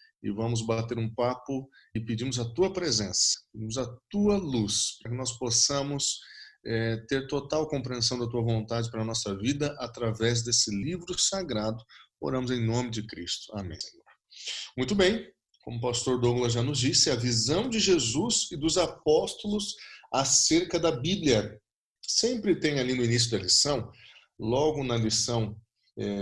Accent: Brazilian